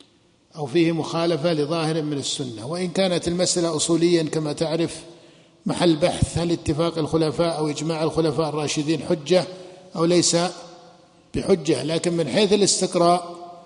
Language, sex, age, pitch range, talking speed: Arabic, male, 50-69, 160-185 Hz, 125 wpm